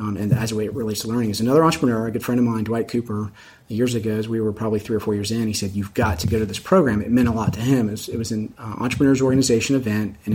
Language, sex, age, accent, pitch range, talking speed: English, male, 30-49, American, 110-135 Hz, 315 wpm